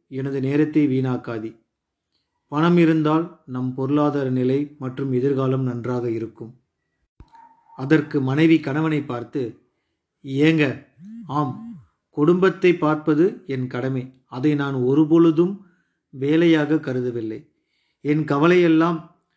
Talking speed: 85 wpm